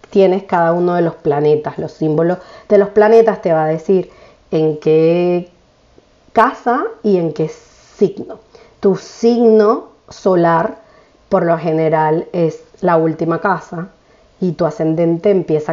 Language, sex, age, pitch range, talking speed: Spanish, female, 30-49, 155-195 Hz, 135 wpm